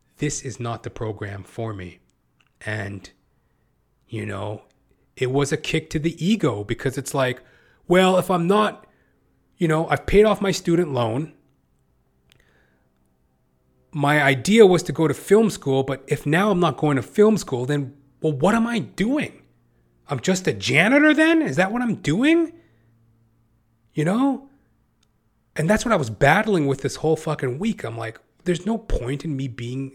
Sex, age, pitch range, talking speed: male, 30-49, 120-170 Hz, 170 wpm